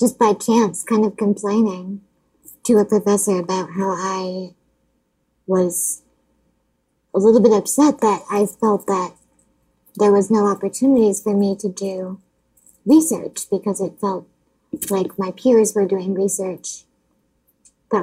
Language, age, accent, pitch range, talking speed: English, 20-39, American, 195-230 Hz, 135 wpm